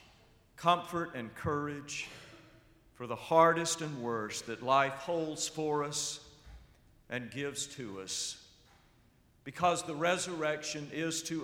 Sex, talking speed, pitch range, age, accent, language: male, 115 wpm, 125-160 Hz, 50-69, American, English